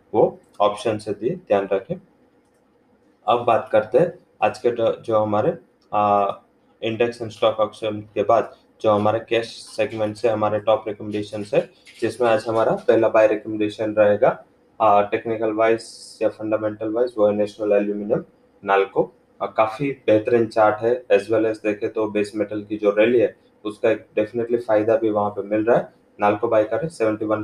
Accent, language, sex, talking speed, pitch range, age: Indian, English, male, 145 wpm, 105-115 Hz, 20-39